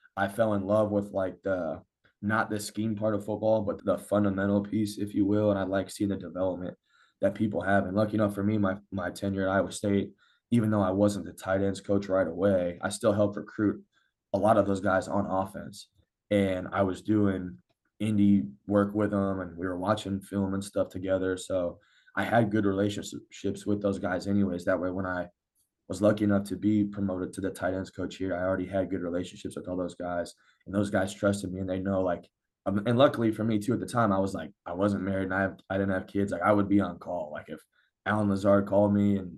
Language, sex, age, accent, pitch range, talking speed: English, male, 20-39, American, 95-105 Hz, 235 wpm